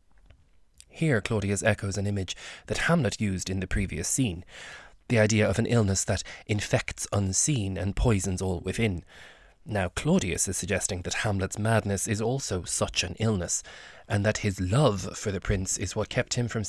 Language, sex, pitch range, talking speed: English, male, 95-115 Hz, 175 wpm